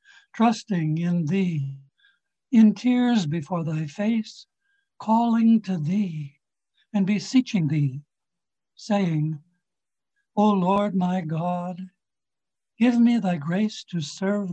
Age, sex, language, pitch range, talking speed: 60-79, male, English, 165-215 Hz, 105 wpm